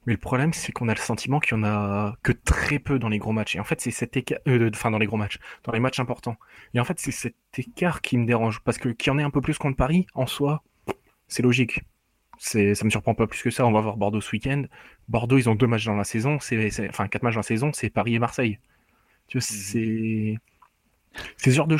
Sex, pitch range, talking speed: male, 110-135 Hz, 275 wpm